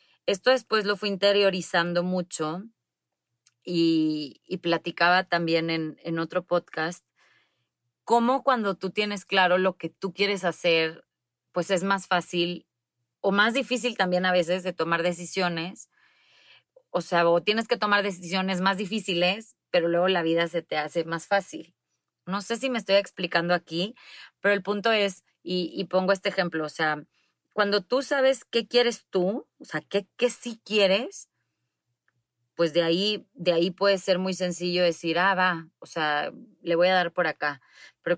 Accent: Mexican